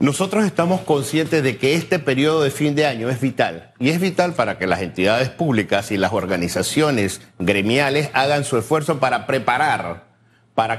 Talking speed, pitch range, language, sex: 170 wpm, 115-155 Hz, Spanish, male